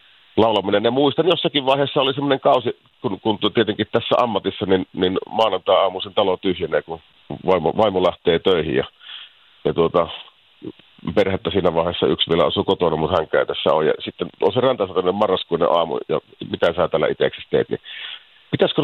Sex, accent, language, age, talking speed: male, native, Finnish, 50-69, 170 wpm